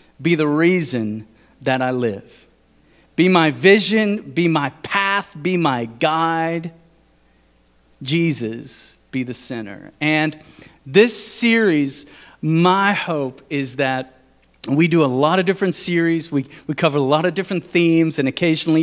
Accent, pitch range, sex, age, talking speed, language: American, 145-205 Hz, male, 40-59, 135 wpm, English